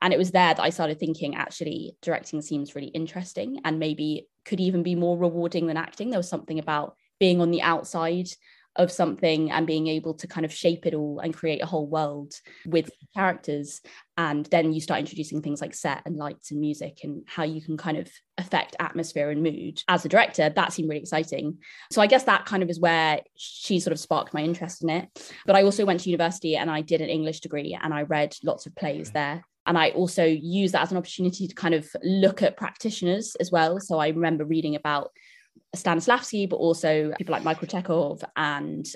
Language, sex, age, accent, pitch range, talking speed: English, female, 20-39, British, 155-180 Hz, 215 wpm